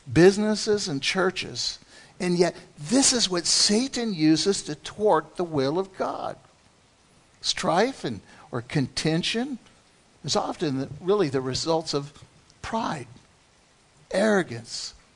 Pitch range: 140-175 Hz